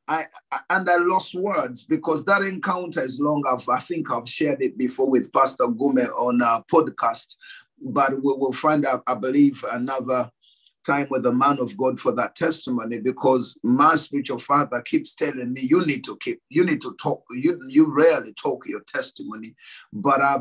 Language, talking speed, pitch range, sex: English, 185 wpm, 130-200 Hz, male